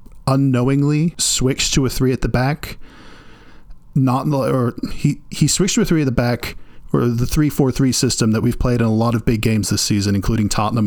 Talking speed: 210 wpm